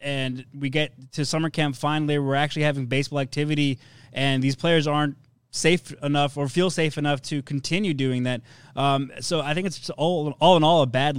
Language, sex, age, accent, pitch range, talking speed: English, male, 20-39, American, 135-155 Hz, 200 wpm